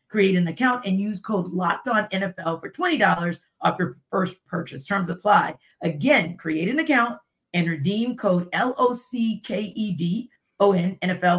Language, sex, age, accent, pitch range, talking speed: English, female, 40-59, American, 170-215 Hz, 120 wpm